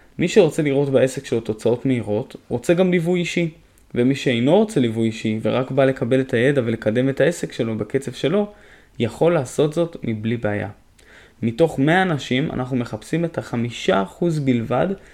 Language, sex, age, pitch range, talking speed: Hebrew, male, 20-39, 120-155 Hz, 160 wpm